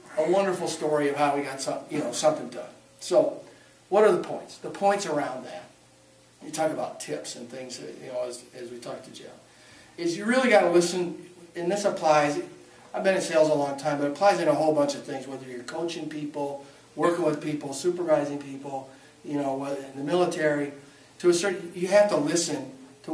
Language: English